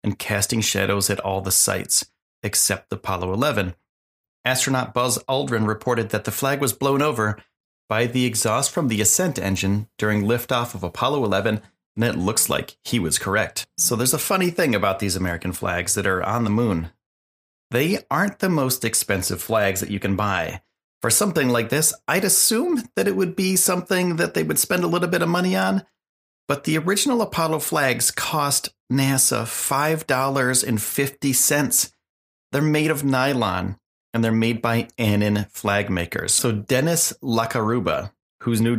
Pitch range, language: 100-135 Hz, English